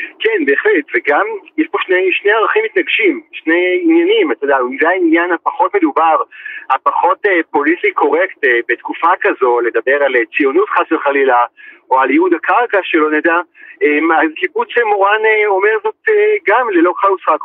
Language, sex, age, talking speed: Hebrew, male, 40-59, 145 wpm